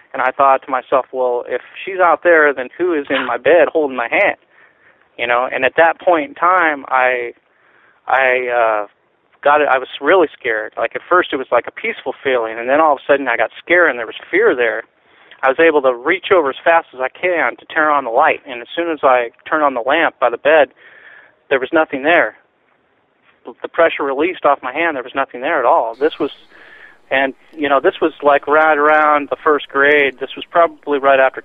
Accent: American